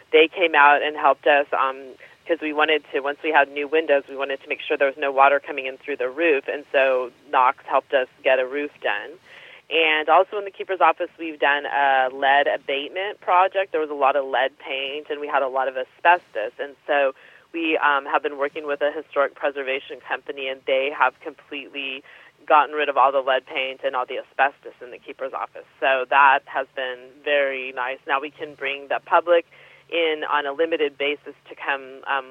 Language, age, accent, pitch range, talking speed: English, 30-49, American, 140-175 Hz, 215 wpm